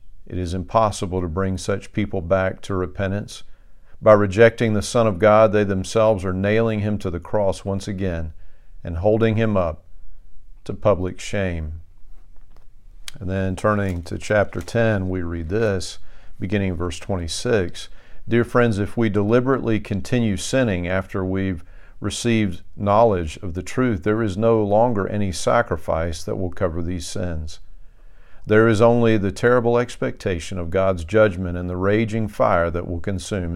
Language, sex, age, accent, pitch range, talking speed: English, male, 50-69, American, 90-110 Hz, 155 wpm